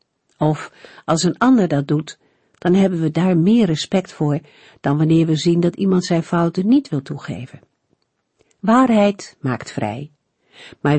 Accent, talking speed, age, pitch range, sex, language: Dutch, 155 wpm, 50-69, 140-185 Hz, female, Dutch